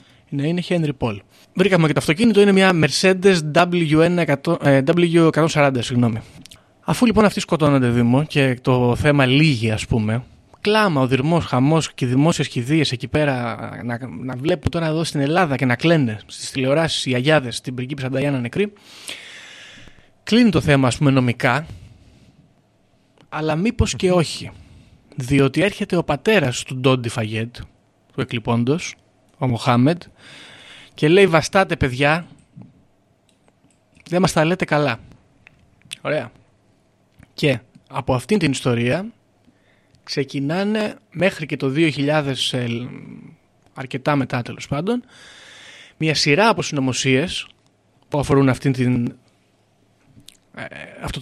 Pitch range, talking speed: 125-160 Hz, 120 wpm